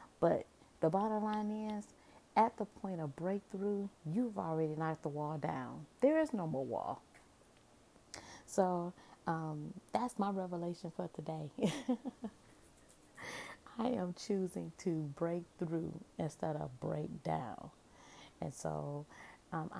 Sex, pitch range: female, 165-215 Hz